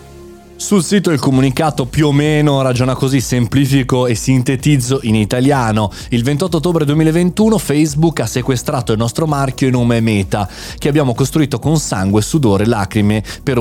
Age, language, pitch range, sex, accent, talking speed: 20-39, Italian, 110-145 Hz, male, native, 160 wpm